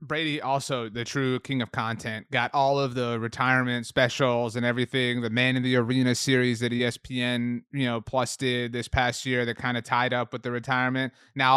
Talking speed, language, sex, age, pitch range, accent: 200 wpm, English, male, 30-49, 120-145 Hz, American